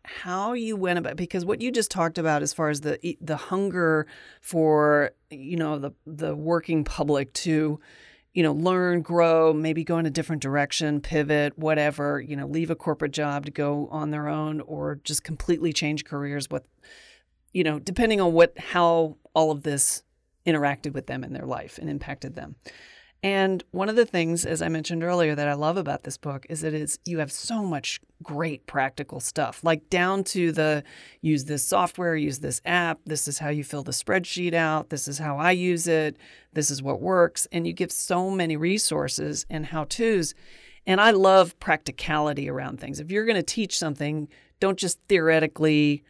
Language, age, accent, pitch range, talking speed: English, 40-59, American, 150-175 Hz, 190 wpm